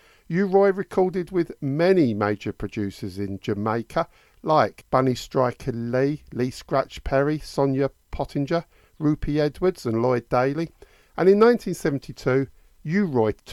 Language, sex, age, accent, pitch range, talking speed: English, male, 50-69, British, 110-155 Hz, 115 wpm